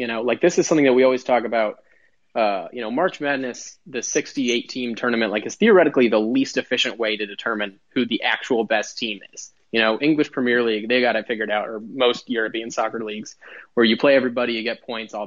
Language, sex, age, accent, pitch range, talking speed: English, male, 20-39, American, 115-145 Hz, 225 wpm